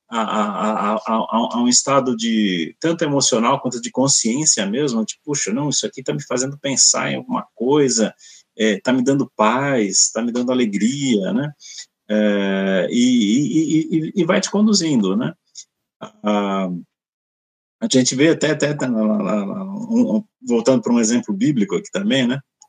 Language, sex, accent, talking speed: Portuguese, male, Brazilian, 145 wpm